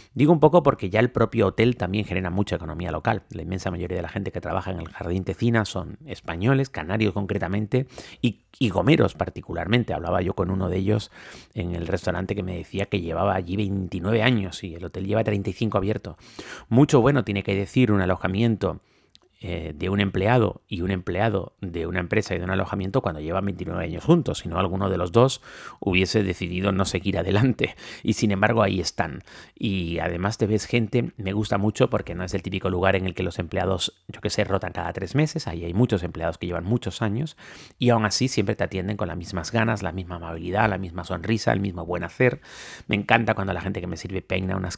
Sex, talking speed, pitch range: male, 215 wpm, 90-110 Hz